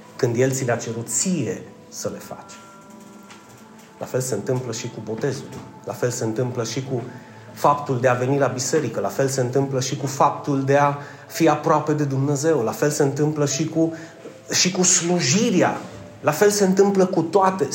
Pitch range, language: 120-165 Hz, Romanian